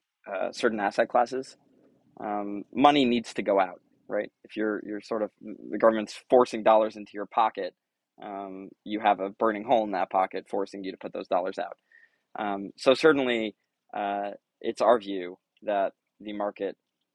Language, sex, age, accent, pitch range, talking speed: English, male, 20-39, American, 100-120 Hz, 170 wpm